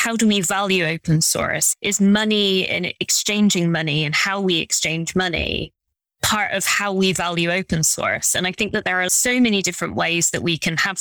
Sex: female